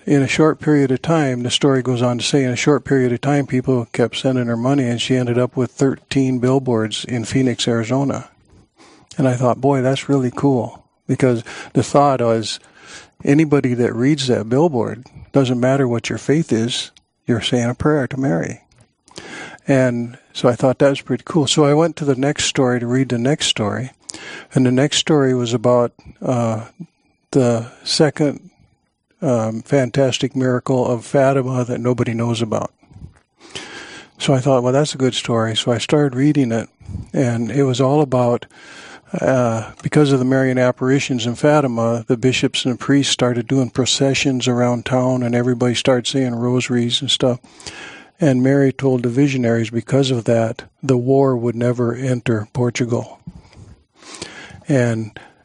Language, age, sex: English, 60-79, male